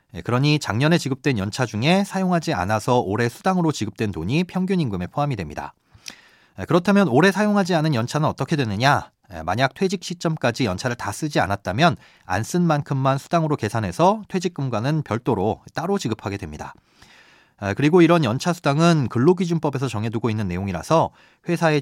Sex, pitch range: male, 110-160 Hz